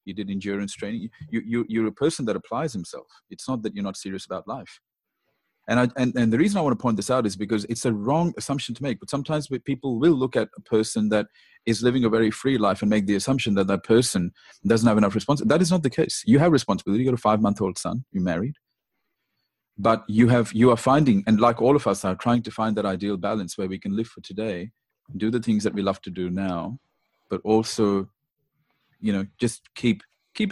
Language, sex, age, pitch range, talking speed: English, male, 30-49, 100-130 Hz, 240 wpm